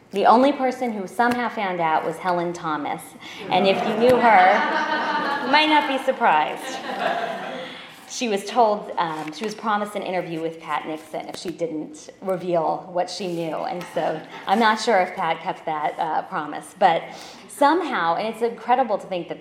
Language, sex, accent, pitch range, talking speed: English, female, American, 155-190 Hz, 180 wpm